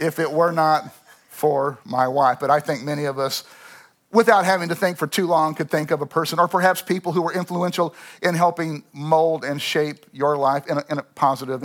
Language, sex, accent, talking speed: English, male, American, 215 wpm